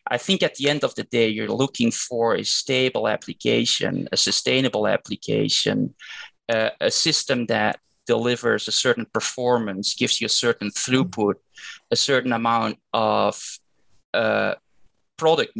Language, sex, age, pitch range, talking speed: English, male, 20-39, 115-145 Hz, 140 wpm